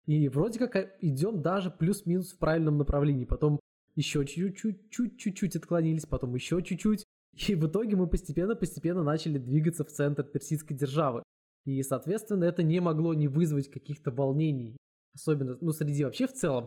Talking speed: 160 wpm